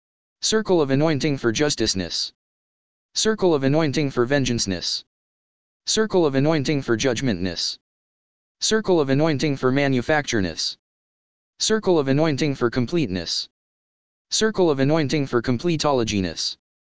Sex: male